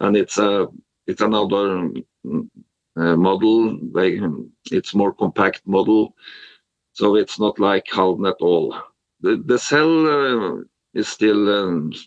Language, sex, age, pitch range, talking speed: English, male, 50-69, 95-115 Hz, 130 wpm